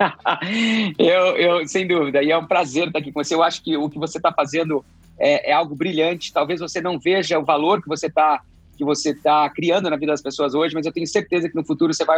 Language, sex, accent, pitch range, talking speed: Portuguese, male, Brazilian, 155-190 Hz, 240 wpm